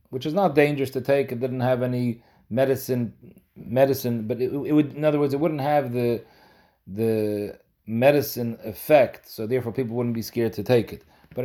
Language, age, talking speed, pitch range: English, 40-59, 190 wpm, 115-135 Hz